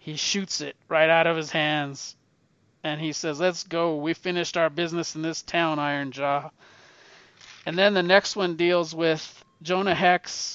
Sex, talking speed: male, 175 wpm